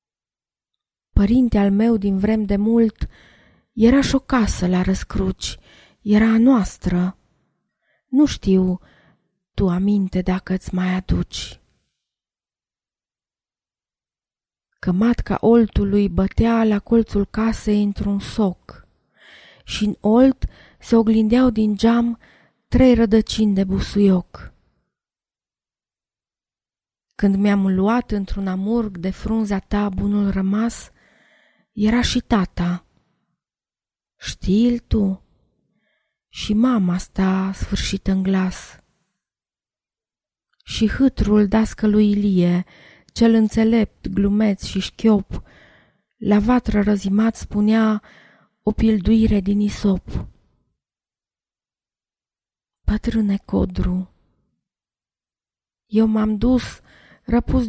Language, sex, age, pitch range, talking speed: Romanian, female, 20-39, 190-225 Hz, 90 wpm